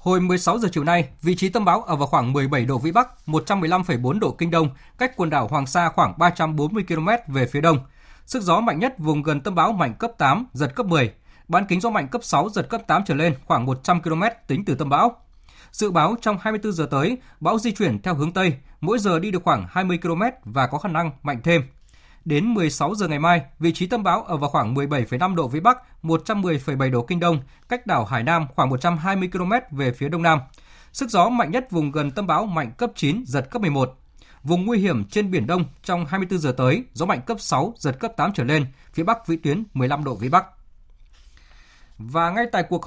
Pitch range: 145-190 Hz